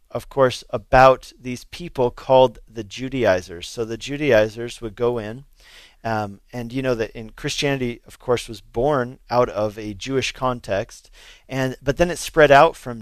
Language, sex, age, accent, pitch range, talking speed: English, male, 40-59, American, 110-130 Hz, 170 wpm